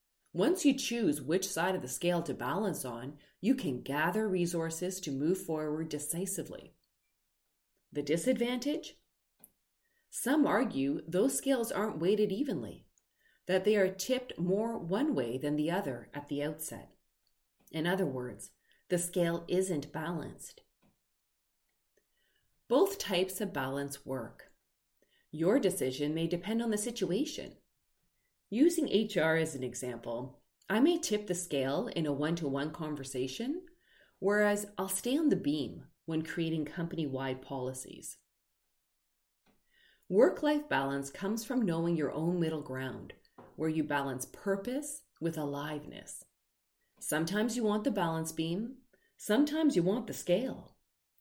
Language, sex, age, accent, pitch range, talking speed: English, female, 30-49, American, 140-205 Hz, 130 wpm